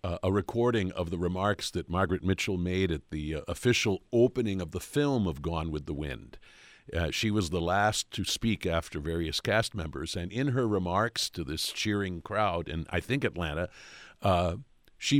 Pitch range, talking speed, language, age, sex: 90-120 Hz, 190 wpm, English, 50-69, male